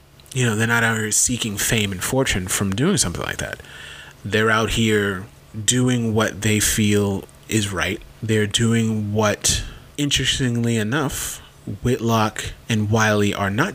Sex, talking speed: male, 150 wpm